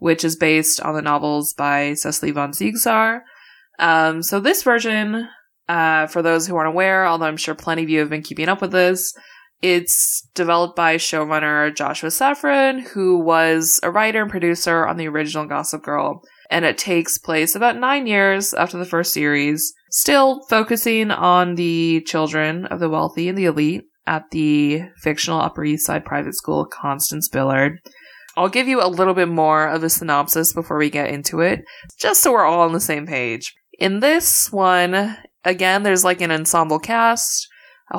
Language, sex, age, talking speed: English, female, 20-39, 180 wpm